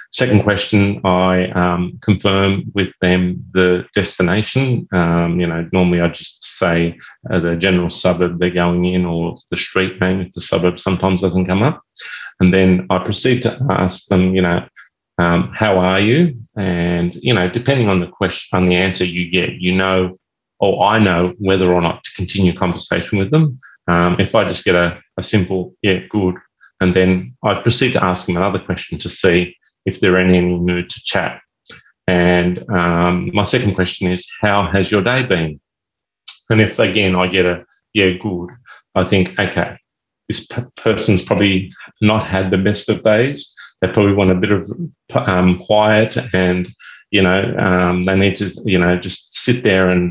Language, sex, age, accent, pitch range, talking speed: English, male, 30-49, Australian, 90-105 Hz, 180 wpm